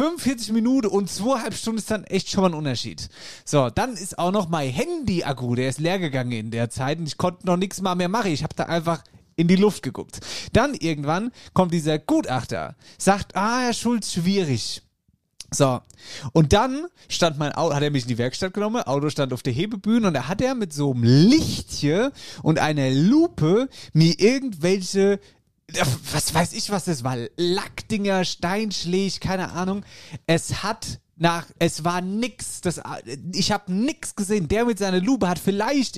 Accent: German